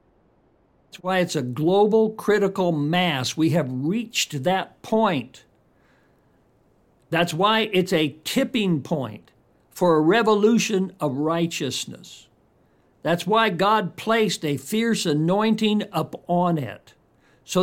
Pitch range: 155-215 Hz